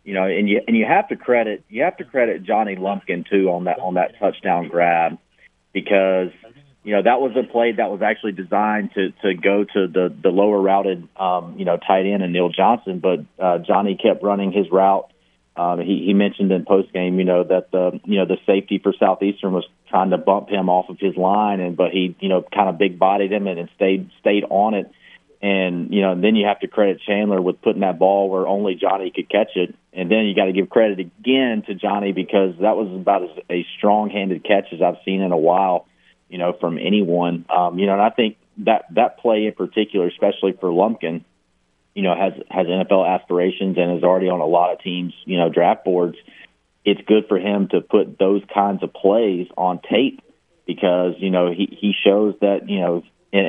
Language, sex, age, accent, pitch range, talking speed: English, male, 30-49, American, 90-100 Hz, 225 wpm